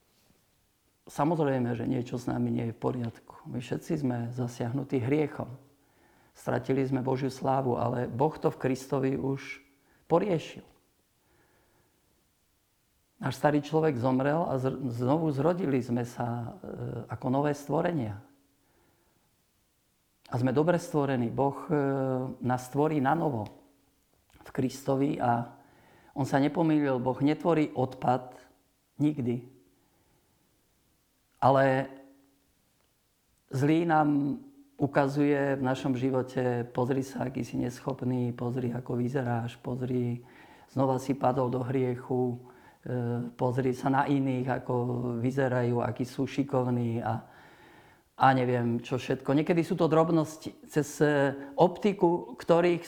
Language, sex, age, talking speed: Slovak, male, 50-69, 110 wpm